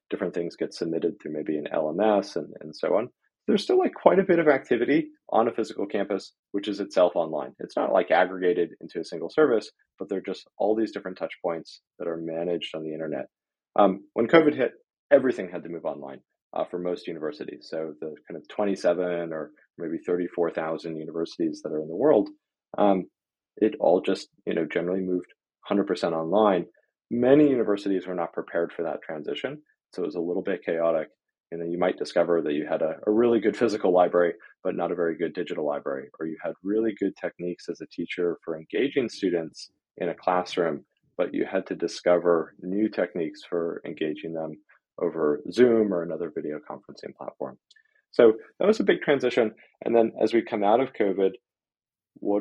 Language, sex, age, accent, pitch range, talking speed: English, male, 30-49, American, 85-115 Hz, 195 wpm